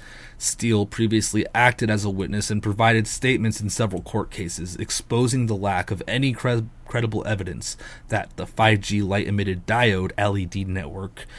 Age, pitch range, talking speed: 30-49, 100-125 Hz, 150 wpm